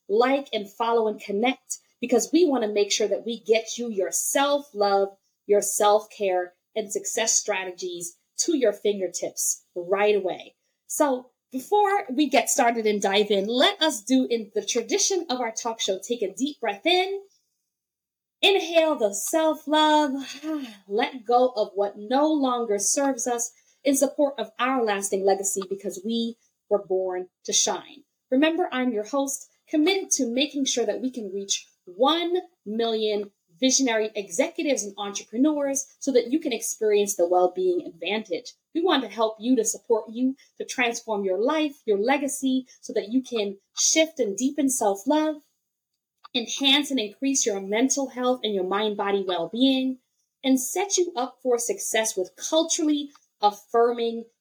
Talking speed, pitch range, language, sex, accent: 155 wpm, 205-280 Hz, English, female, American